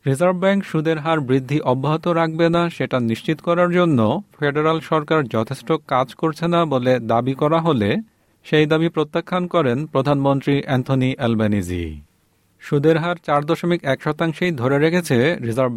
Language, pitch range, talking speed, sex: Bengali, 120-165 Hz, 145 wpm, male